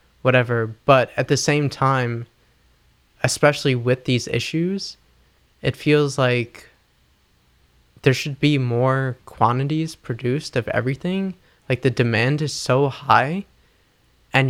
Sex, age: male, 20-39